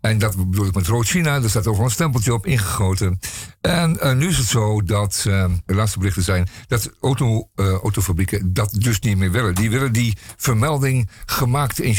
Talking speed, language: 195 wpm, Dutch